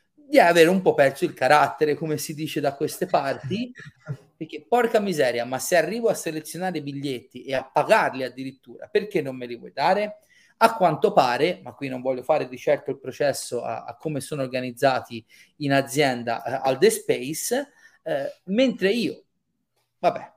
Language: Italian